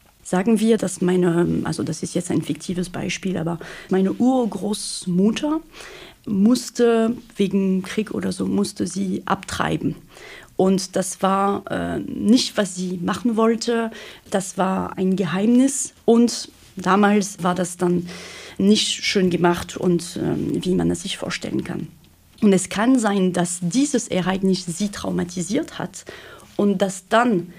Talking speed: 140 wpm